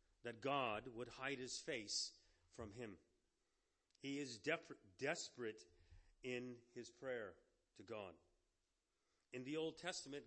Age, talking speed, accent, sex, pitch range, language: 40-59, 115 wpm, American, male, 90-155 Hz, English